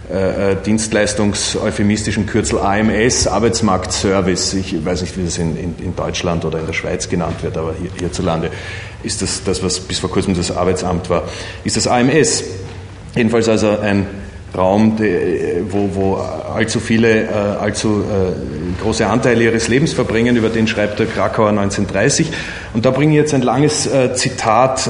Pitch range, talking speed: 95-120 Hz, 155 wpm